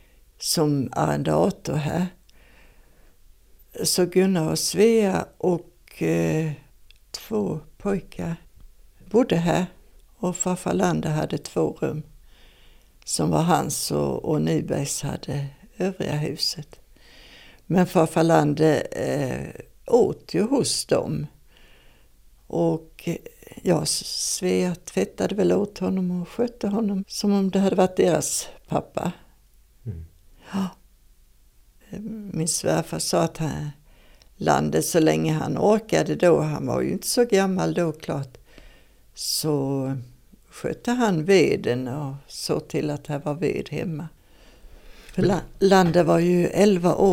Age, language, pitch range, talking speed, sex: 60-79, Swedish, 145-185 Hz, 115 wpm, female